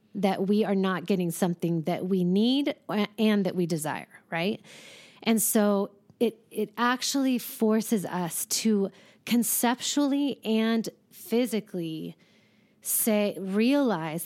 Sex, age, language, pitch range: female, 30-49, English, 185-230 Hz